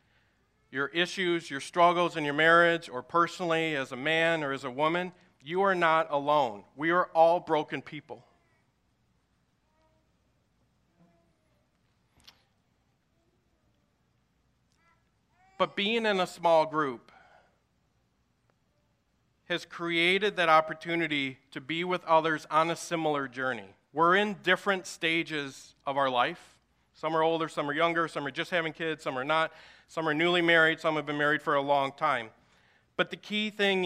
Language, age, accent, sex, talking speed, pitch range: English, 40-59, American, male, 140 wpm, 140-170 Hz